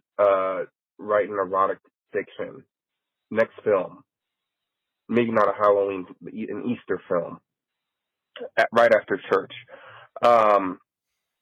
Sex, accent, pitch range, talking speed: male, American, 105-130 Hz, 90 wpm